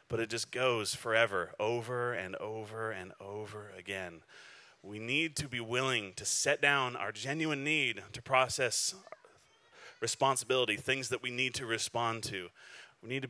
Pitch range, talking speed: 110-135 Hz, 160 wpm